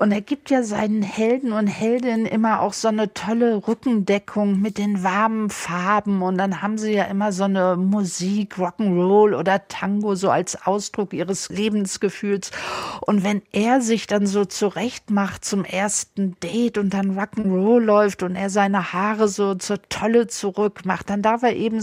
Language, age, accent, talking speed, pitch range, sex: German, 50-69, German, 170 wpm, 195-220 Hz, female